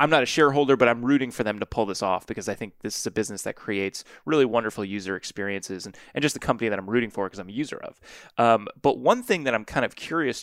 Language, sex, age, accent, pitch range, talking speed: English, male, 20-39, American, 105-125 Hz, 280 wpm